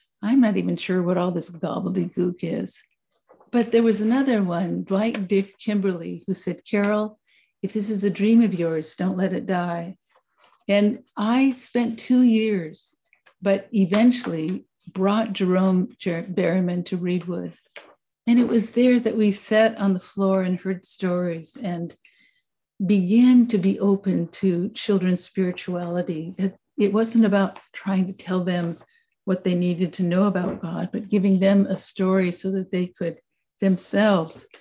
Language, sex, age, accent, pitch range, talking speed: English, female, 60-79, American, 180-215 Hz, 155 wpm